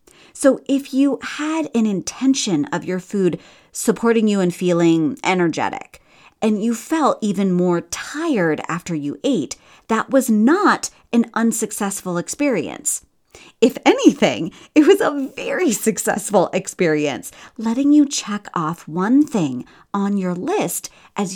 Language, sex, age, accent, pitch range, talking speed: English, female, 40-59, American, 170-260 Hz, 130 wpm